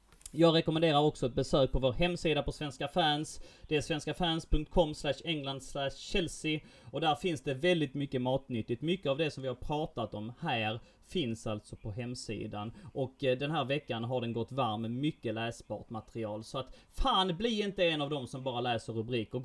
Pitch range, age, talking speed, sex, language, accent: 110-150 Hz, 30-49, 190 wpm, male, Swedish, native